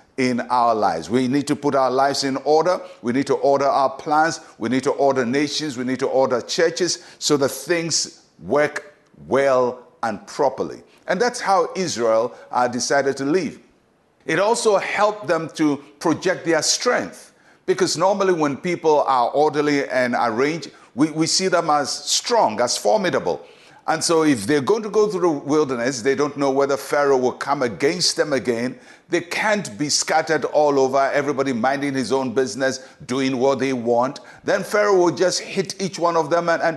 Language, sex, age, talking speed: English, male, 60-79, 185 wpm